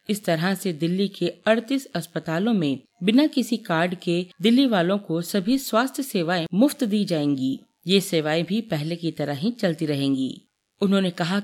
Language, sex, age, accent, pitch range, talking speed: Hindi, female, 40-59, native, 160-220 Hz, 170 wpm